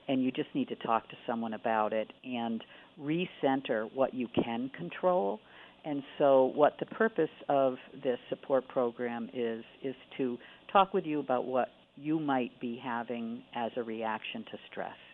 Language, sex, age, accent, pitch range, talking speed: English, female, 50-69, American, 115-135 Hz, 165 wpm